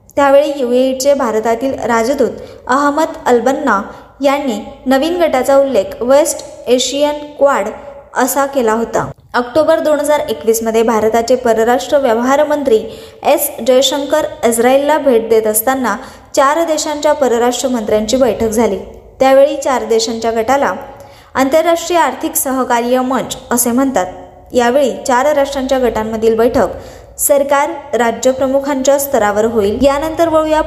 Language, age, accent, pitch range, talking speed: Marathi, 20-39, native, 235-290 Hz, 110 wpm